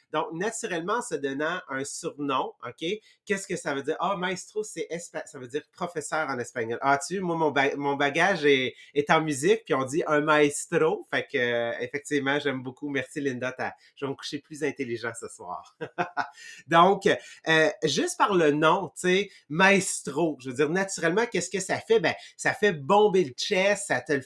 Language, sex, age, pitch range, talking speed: English, male, 30-49, 140-190 Hz, 205 wpm